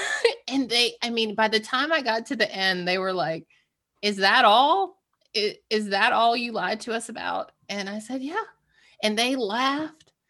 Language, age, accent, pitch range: English, 30-49, American, 180-265 Hz